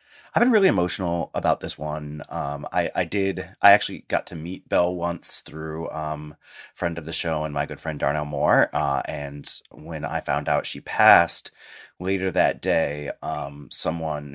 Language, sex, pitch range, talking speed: English, male, 75-110 Hz, 180 wpm